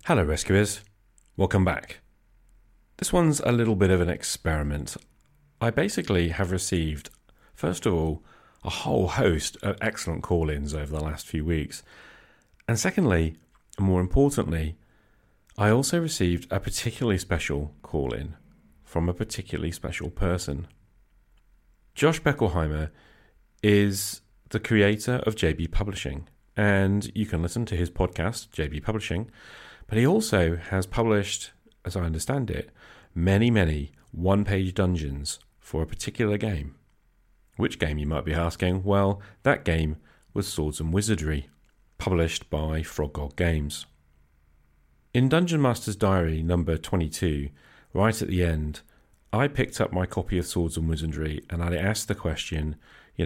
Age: 40-59